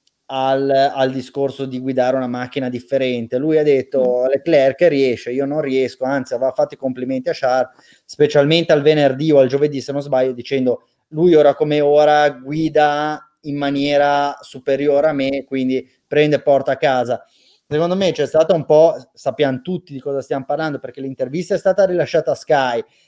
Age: 30-49